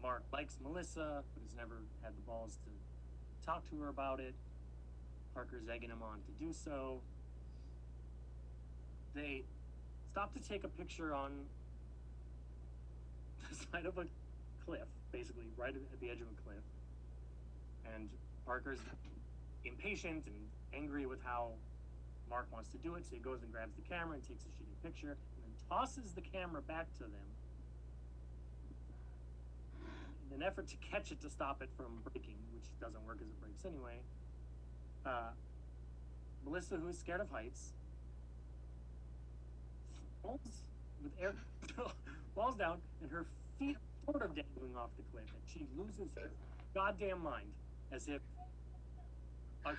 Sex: male